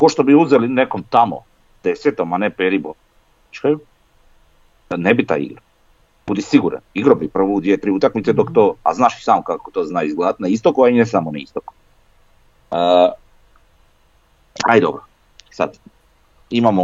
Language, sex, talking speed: Croatian, male, 150 wpm